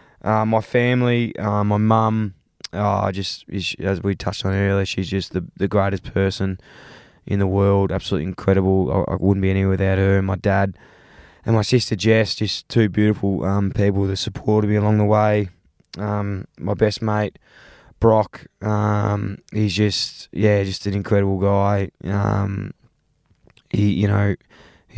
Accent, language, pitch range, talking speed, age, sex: Australian, English, 95-105 Hz, 160 wpm, 20-39, male